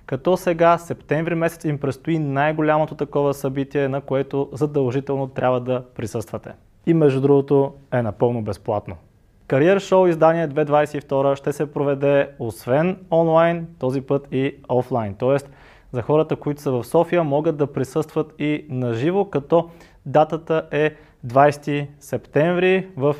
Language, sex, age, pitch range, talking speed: Bulgarian, male, 20-39, 125-155 Hz, 135 wpm